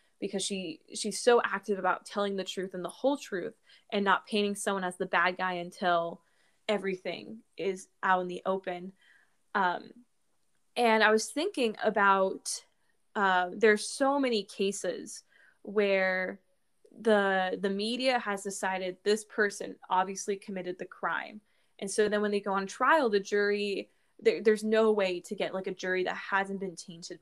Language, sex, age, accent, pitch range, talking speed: English, female, 20-39, American, 185-215 Hz, 160 wpm